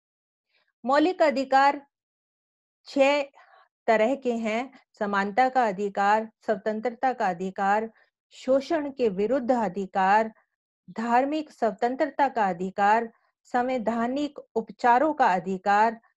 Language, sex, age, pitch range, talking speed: English, female, 50-69, 205-255 Hz, 90 wpm